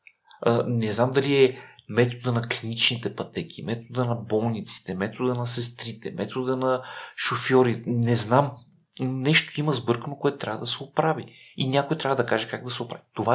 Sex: male